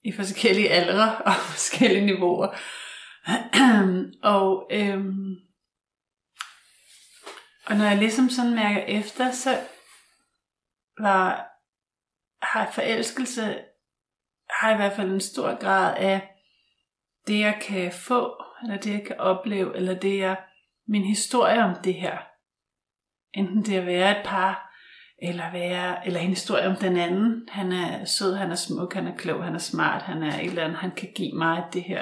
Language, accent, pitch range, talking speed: Danish, native, 185-220 Hz, 145 wpm